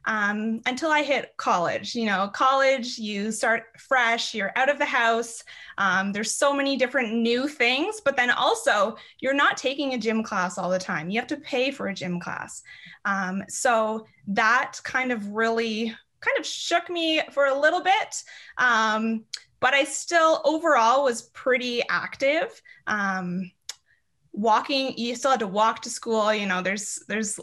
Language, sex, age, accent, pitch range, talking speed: English, female, 20-39, American, 205-260 Hz, 170 wpm